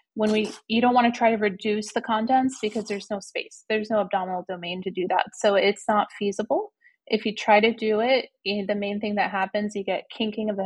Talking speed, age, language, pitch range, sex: 235 wpm, 30-49, English, 195-225 Hz, female